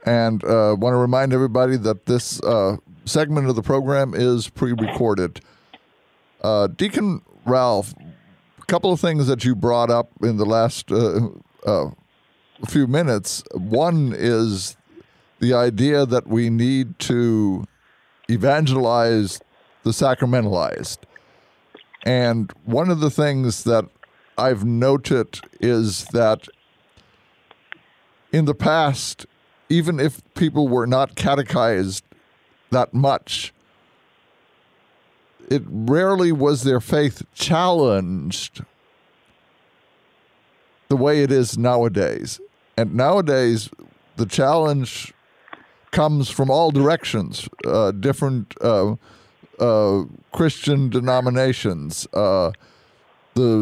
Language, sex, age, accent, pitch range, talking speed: English, male, 50-69, American, 115-145 Hz, 100 wpm